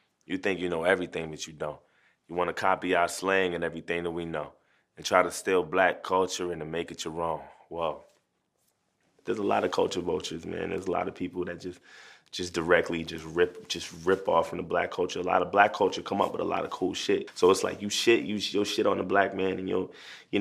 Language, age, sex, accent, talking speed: English, 20-39, male, American, 250 wpm